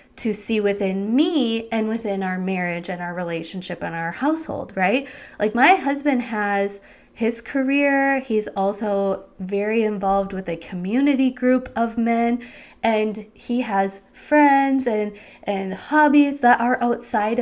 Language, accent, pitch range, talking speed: English, American, 195-260 Hz, 140 wpm